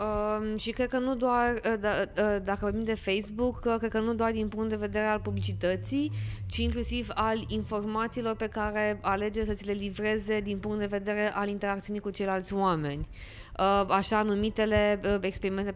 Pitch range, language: 180-220 Hz, Romanian